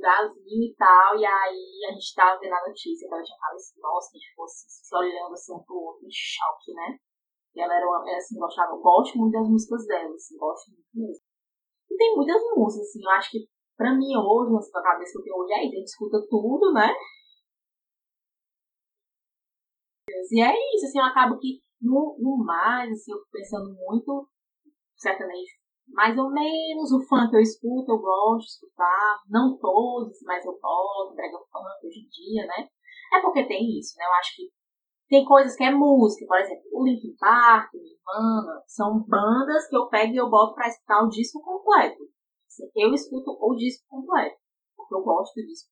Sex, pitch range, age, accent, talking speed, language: female, 195-275 Hz, 10-29, Brazilian, 195 wpm, Portuguese